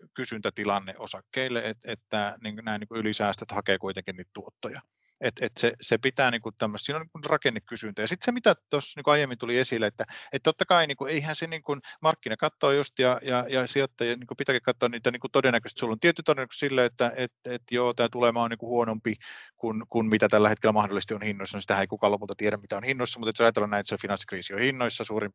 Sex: male